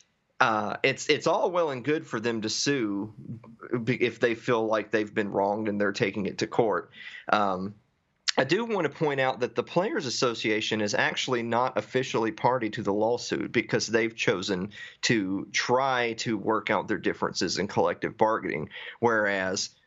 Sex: male